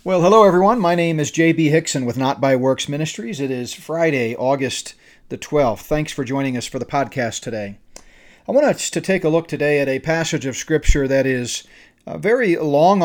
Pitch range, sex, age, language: 135-170 Hz, male, 40-59, English